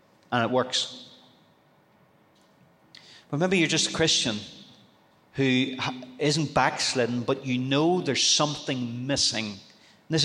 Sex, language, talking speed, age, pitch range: male, English, 115 wpm, 40-59, 115-140 Hz